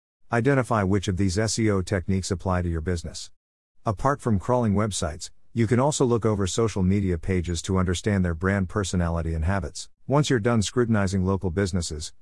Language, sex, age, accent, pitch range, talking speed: English, male, 50-69, American, 90-115 Hz, 170 wpm